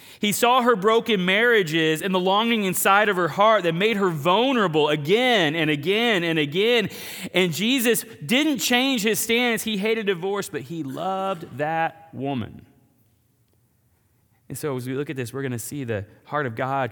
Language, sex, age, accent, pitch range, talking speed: English, male, 30-49, American, 115-190 Hz, 175 wpm